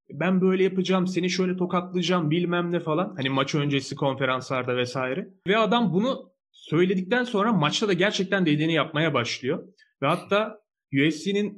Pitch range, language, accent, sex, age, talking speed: 125-180 Hz, Turkish, native, male, 30-49, 145 wpm